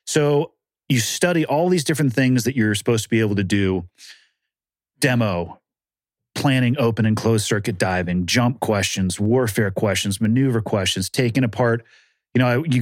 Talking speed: 160 wpm